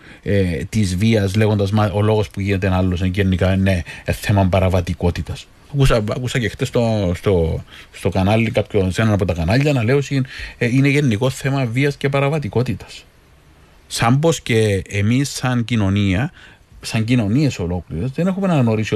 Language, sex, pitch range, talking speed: Greek, male, 100-135 Hz, 145 wpm